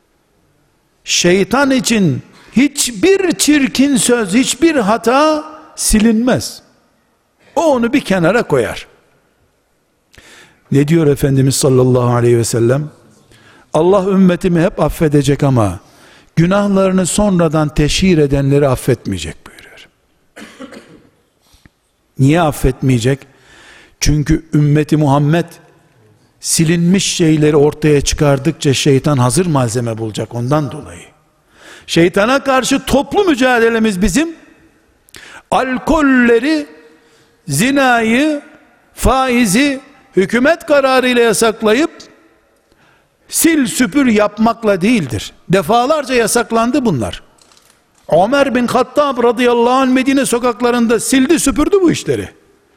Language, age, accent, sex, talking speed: Turkish, 60-79, native, male, 85 wpm